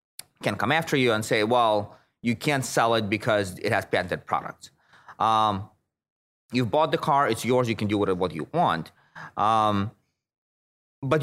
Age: 30-49